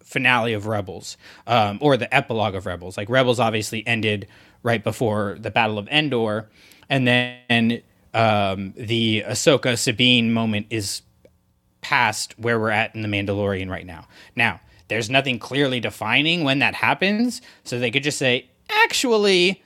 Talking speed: 150 wpm